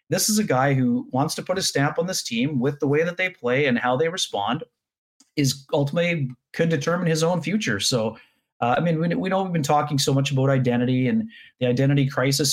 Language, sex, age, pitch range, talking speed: English, male, 30-49, 135-195 Hz, 225 wpm